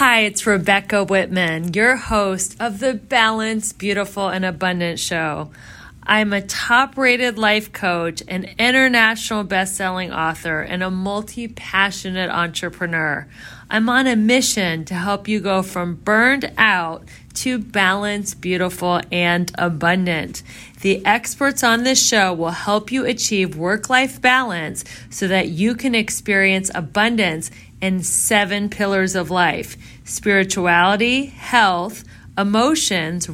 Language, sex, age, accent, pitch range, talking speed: English, female, 30-49, American, 180-235 Hz, 120 wpm